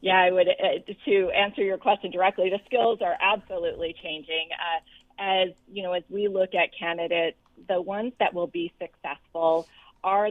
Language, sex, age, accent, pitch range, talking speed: English, female, 30-49, American, 165-190 Hz, 175 wpm